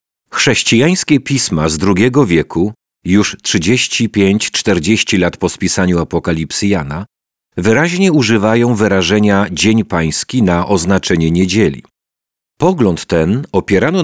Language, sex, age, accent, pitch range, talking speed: Polish, male, 40-59, native, 85-115 Hz, 100 wpm